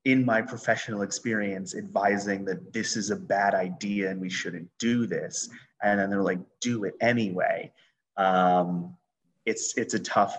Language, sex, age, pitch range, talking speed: English, male, 30-49, 95-105 Hz, 160 wpm